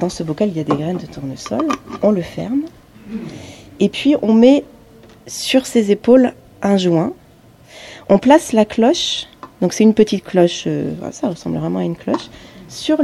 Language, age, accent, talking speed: French, 30-49, French, 180 wpm